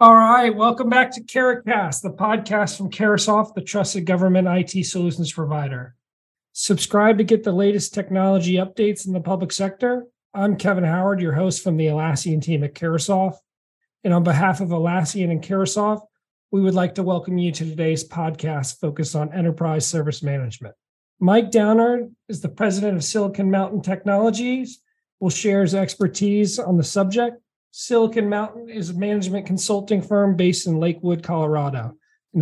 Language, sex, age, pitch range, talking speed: English, male, 40-59, 165-210 Hz, 160 wpm